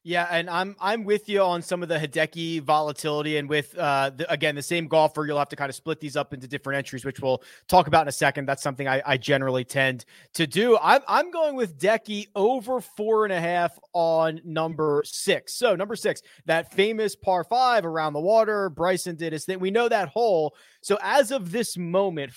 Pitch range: 150-205 Hz